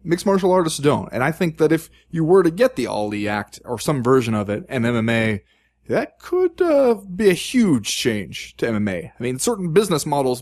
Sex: male